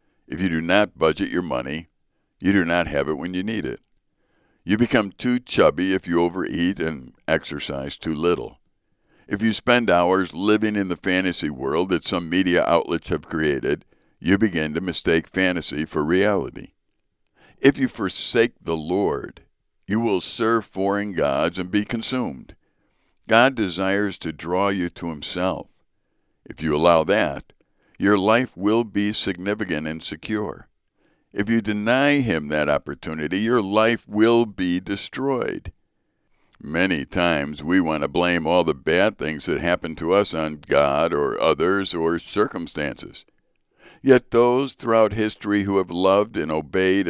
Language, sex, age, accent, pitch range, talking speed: English, male, 60-79, American, 85-110 Hz, 155 wpm